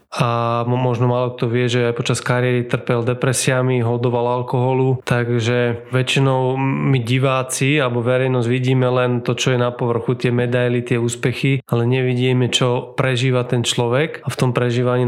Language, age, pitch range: Slovak, 20-39, 125-135 Hz